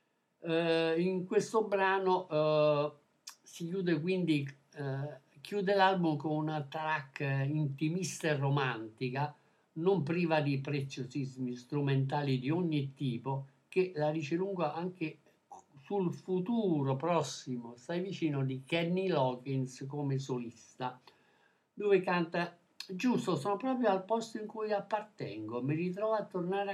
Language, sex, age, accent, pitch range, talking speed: Italian, male, 60-79, native, 135-185 Hz, 120 wpm